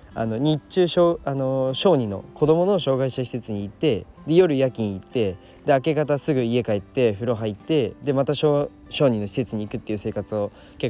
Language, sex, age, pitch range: Japanese, male, 20-39, 105-145 Hz